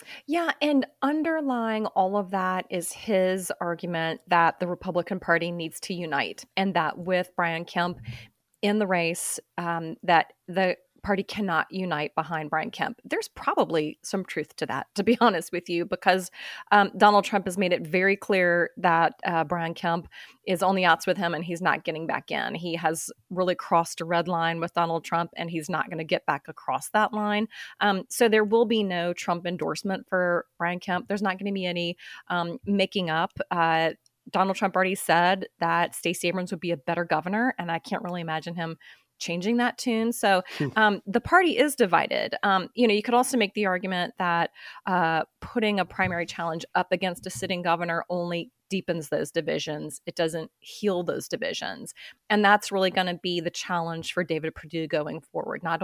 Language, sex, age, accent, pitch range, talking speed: English, female, 30-49, American, 170-200 Hz, 195 wpm